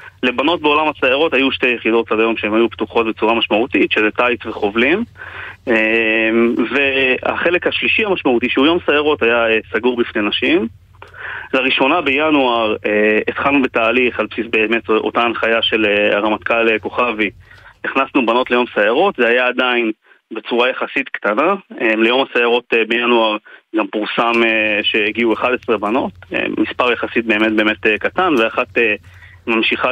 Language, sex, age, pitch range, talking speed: Hebrew, male, 30-49, 110-125 Hz, 125 wpm